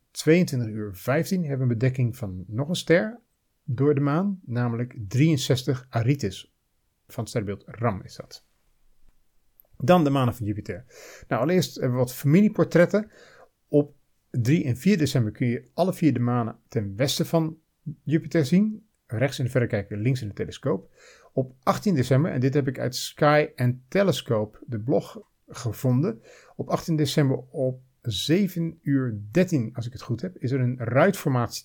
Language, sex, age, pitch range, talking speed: Dutch, male, 50-69, 120-155 Hz, 165 wpm